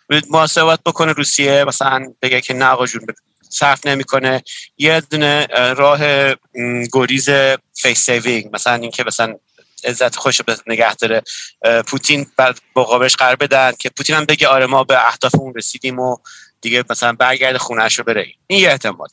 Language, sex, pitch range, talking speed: Persian, male, 125-155 Hz, 150 wpm